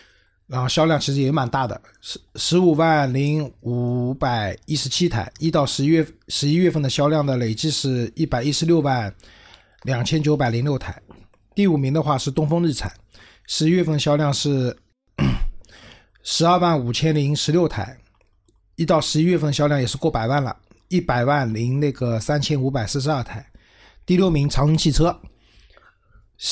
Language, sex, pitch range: Chinese, male, 120-160 Hz